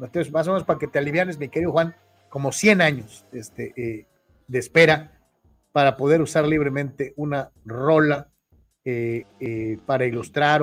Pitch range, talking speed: 130-190 Hz, 160 wpm